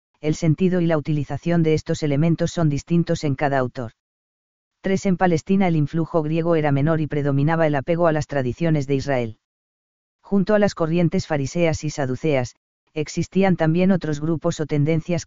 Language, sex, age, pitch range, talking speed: Spanish, female, 40-59, 145-170 Hz, 170 wpm